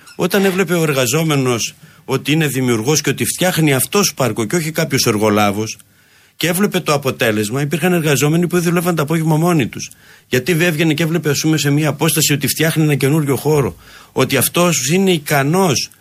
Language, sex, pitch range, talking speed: Greek, male, 130-170 Hz, 175 wpm